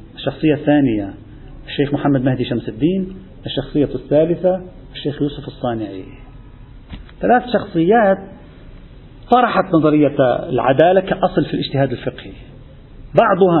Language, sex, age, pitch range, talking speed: Arabic, male, 40-59, 130-170 Hz, 95 wpm